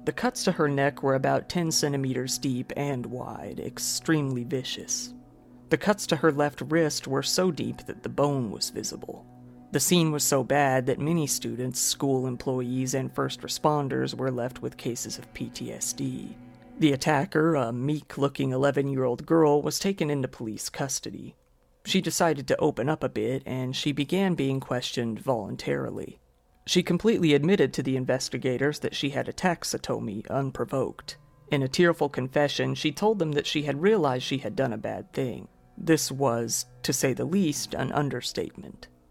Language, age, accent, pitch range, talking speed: English, 40-59, American, 125-150 Hz, 165 wpm